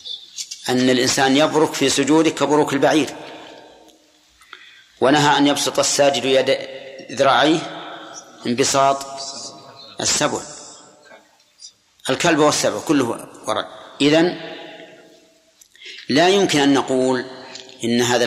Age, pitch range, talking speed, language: 40-59, 125-150 Hz, 85 wpm, Arabic